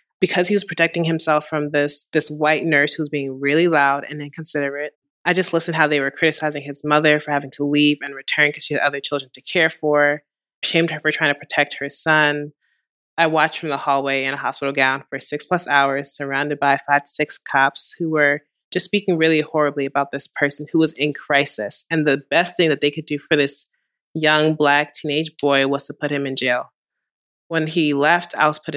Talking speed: 220 wpm